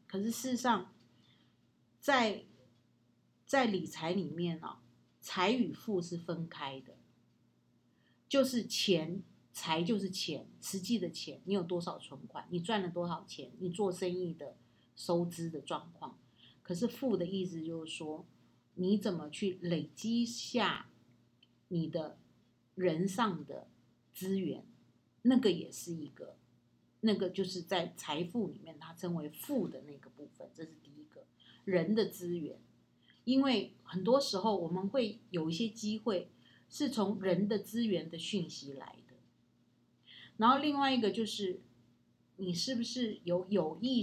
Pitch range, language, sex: 165-220 Hz, Chinese, female